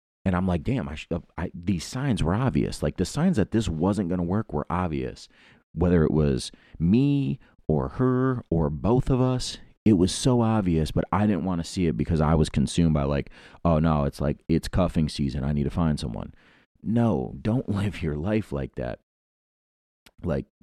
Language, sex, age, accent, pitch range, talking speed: English, male, 30-49, American, 75-100 Hz, 205 wpm